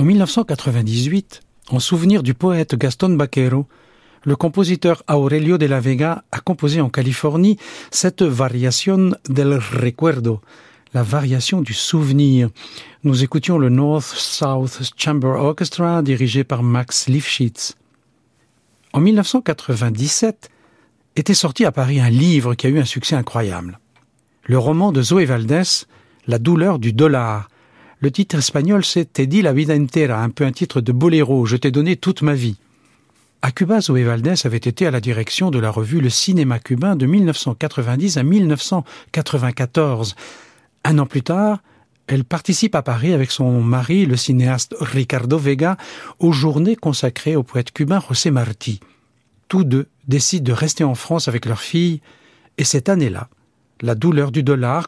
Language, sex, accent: French, male, French